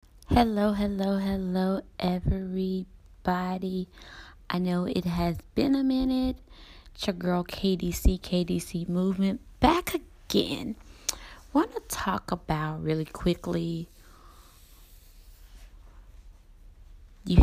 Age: 20-39